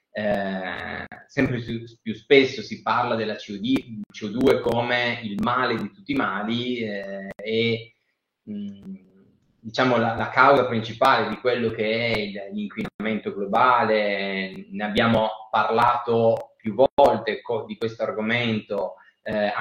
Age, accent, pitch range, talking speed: 30-49, native, 105-140 Hz, 120 wpm